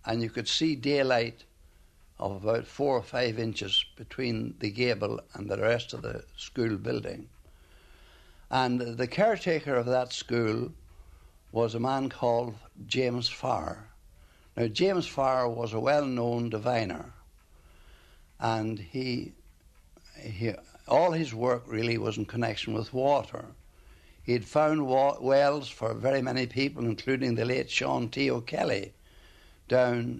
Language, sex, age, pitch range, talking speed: English, male, 60-79, 90-130 Hz, 135 wpm